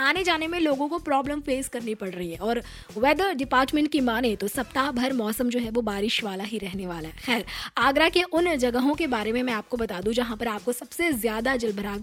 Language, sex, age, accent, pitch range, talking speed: Hindi, female, 20-39, native, 235-300 Hz, 235 wpm